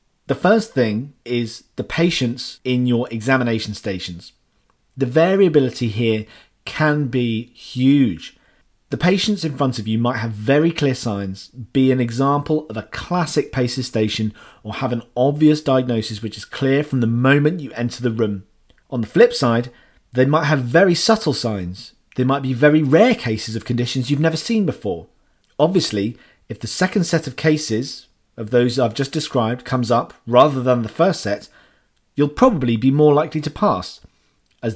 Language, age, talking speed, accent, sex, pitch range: English, 40-59, 170 wpm, British, male, 115-150 Hz